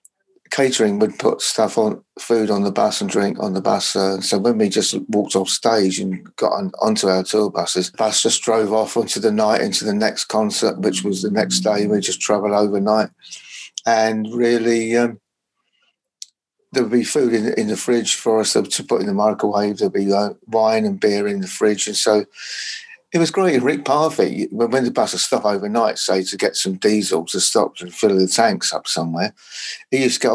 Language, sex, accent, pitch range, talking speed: English, male, British, 100-120 Hz, 215 wpm